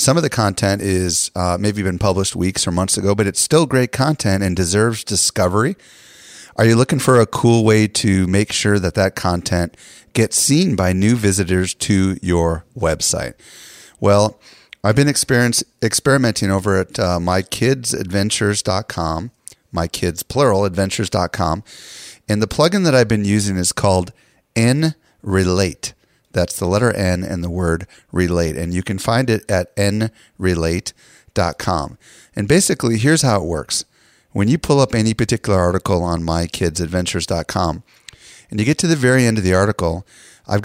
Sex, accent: male, American